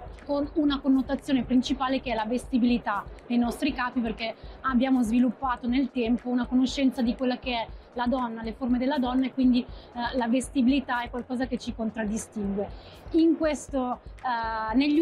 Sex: female